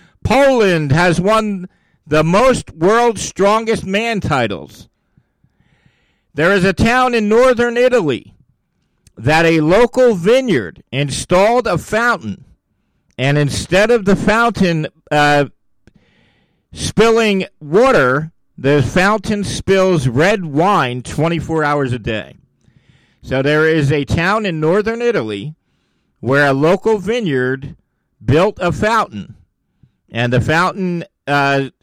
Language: English